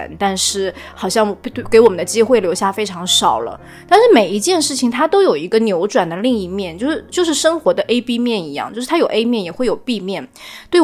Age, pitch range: 20-39, 195-270 Hz